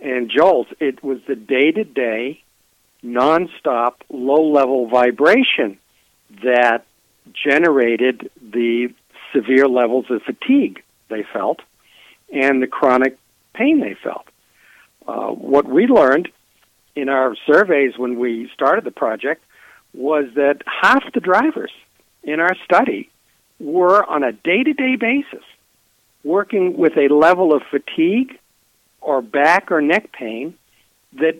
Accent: American